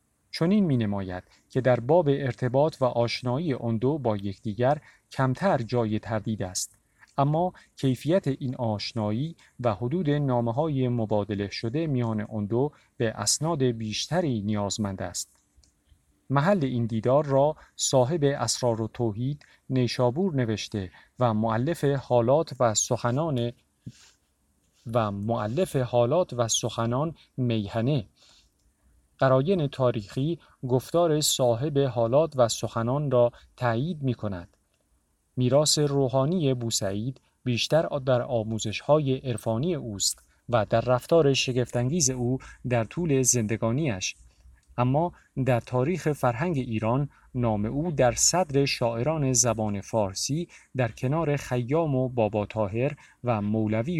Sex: male